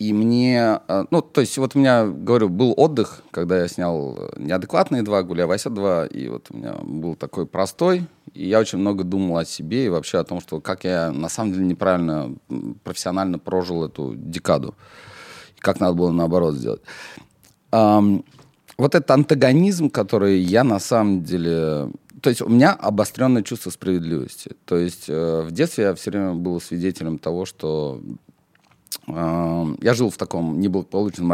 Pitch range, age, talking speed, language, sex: 85-115 Hz, 30-49, 165 wpm, Russian, male